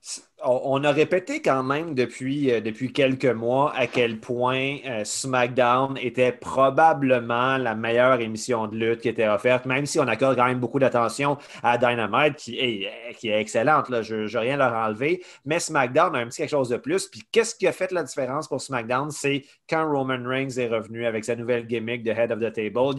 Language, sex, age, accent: French, male, 30-49, Canadian